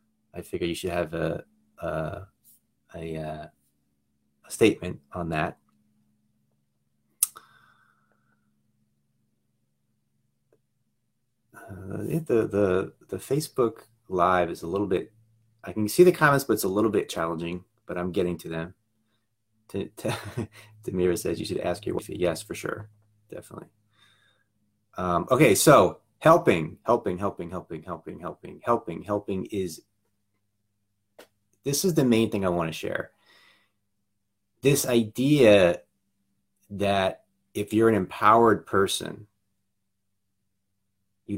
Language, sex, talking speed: English, male, 115 wpm